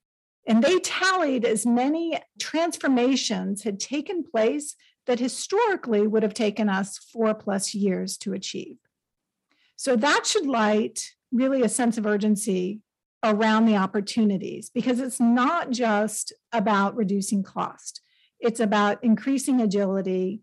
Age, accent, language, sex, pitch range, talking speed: 50-69, American, English, female, 210-265 Hz, 125 wpm